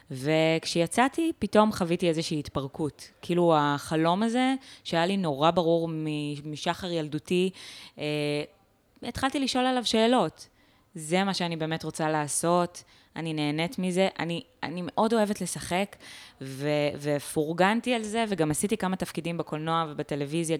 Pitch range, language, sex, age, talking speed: 150-195 Hz, Hebrew, female, 20-39, 125 wpm